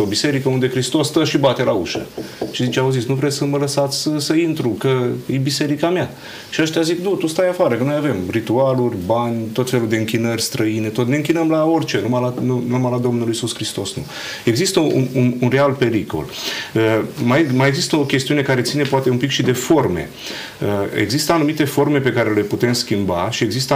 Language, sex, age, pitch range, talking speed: Romanian, male, 40-59, 115-145 Hz, 210 wpm